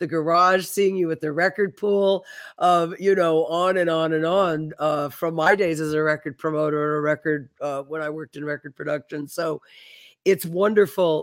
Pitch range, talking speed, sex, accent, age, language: 155-185 Hz, 200 wpm, female, American, 50-69, English